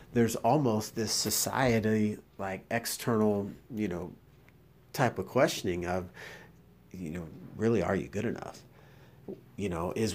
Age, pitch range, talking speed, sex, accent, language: 40-59, 100-120 Hz, 130 wpm, male, American, English